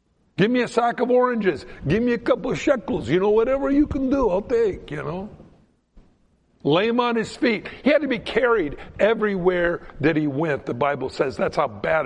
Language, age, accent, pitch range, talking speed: English, 60-79, American, 155-230 Hz, 210 wpm